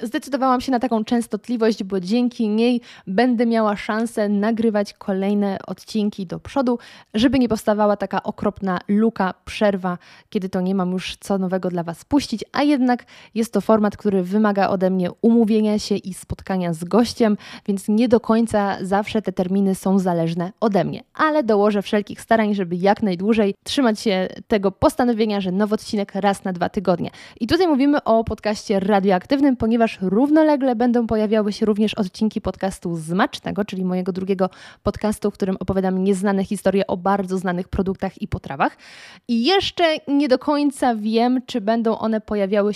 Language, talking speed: Polish, 165 wpm